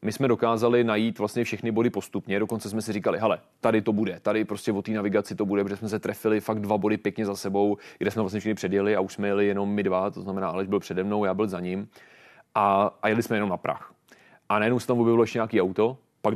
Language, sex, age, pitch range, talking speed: Czech, male, 30-49, 100-115 Hz, 260 wpm